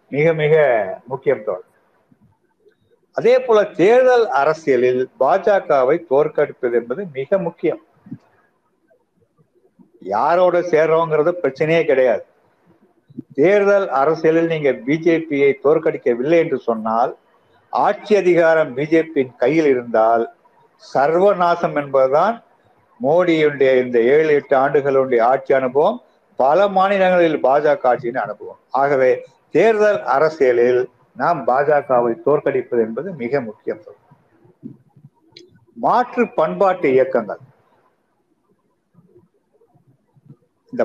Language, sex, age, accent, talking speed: Tamil, male, 50-69, native, 80 wpm